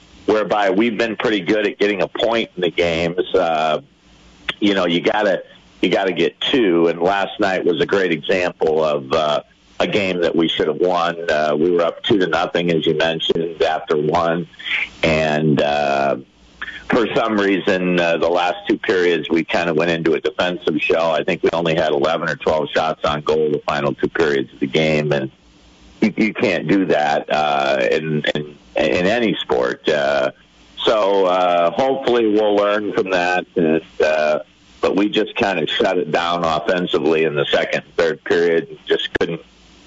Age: 50-69